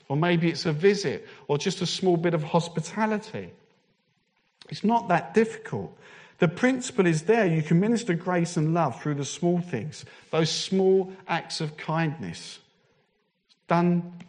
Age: 50-69